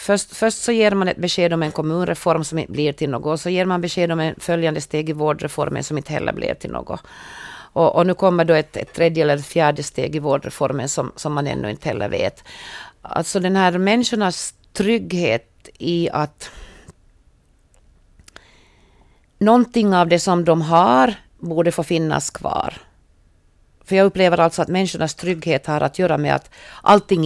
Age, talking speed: 40-59, 185 wpm